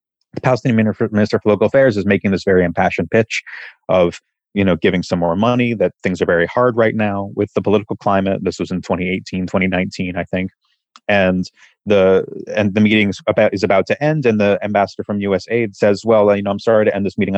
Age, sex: 30-49, male